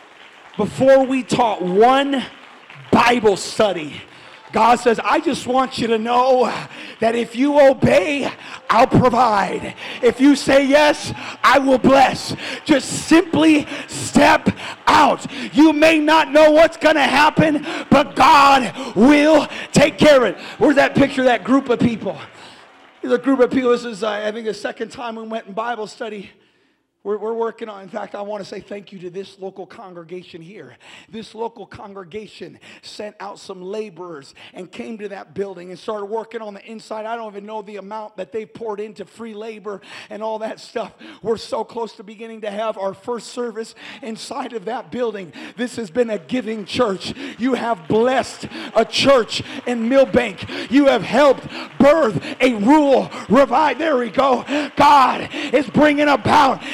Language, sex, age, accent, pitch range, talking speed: English, male, 40-59, American, 215-275 Hz, 175 wpm